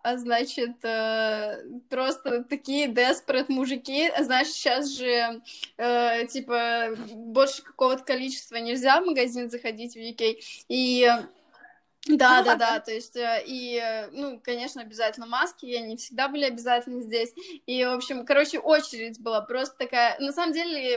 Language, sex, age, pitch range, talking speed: Russian, female, 20-39, 235-295 Hz, 130 wpm